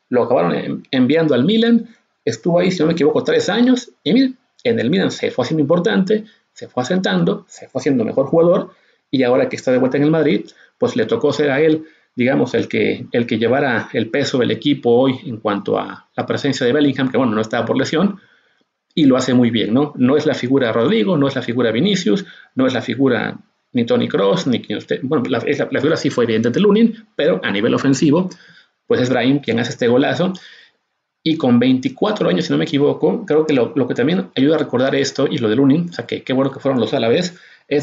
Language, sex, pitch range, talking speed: English, male, 130-200 Hz, 240 wpm